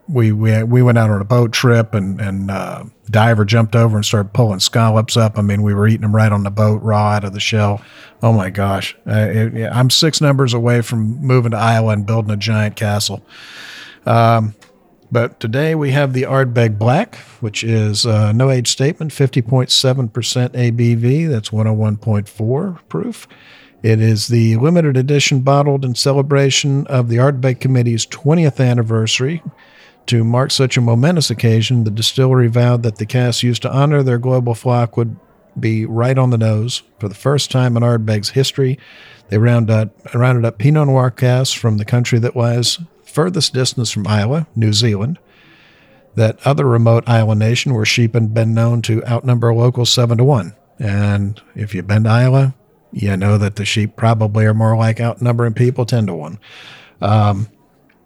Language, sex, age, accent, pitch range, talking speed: English, male, 50-69, American, 110-130 Hz, 175 wpm